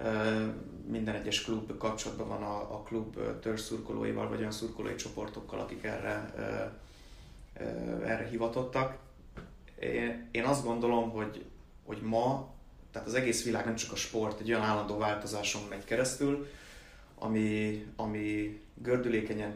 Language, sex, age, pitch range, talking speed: Hungarian, male, 20-39, 105-115 Hz, 120 wpm